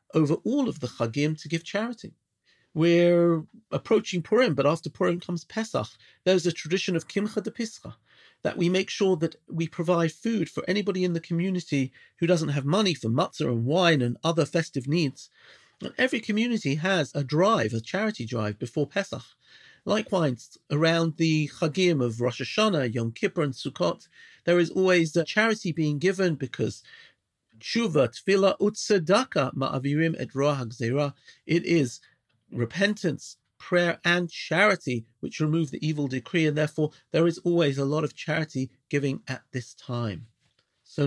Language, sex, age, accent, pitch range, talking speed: English, male, 40-59, British, 125-175 Hz, 150 wpm